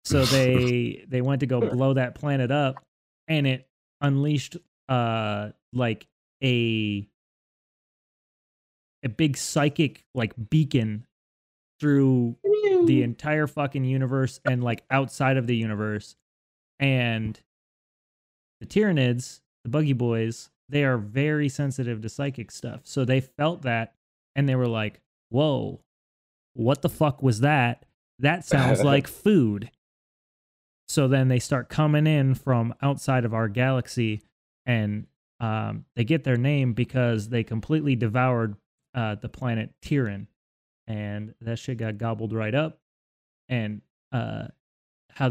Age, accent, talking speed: 20-39, American, 130 wpm